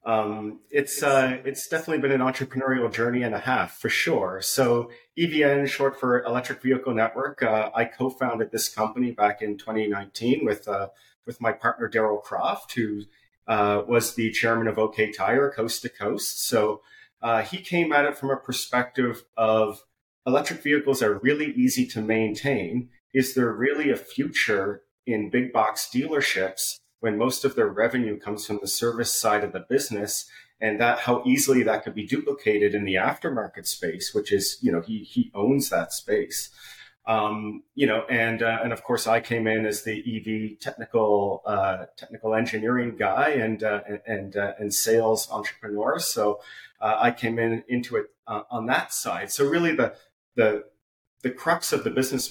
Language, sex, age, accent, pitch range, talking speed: English, male, 30-49, American, 110-130 Hz, 175 wpm